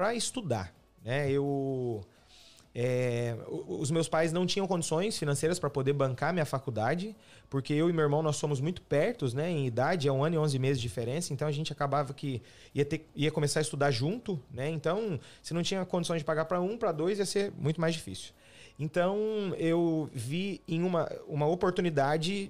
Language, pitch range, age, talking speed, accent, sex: Portuguese, 140-185 Hz, 30-49, 195 wpm, Brazilian, male